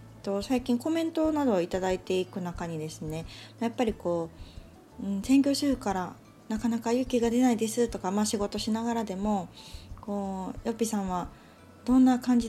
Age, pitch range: 20-39, 175-235 Hz